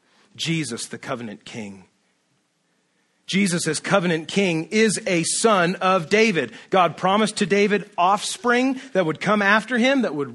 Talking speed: 145 wpm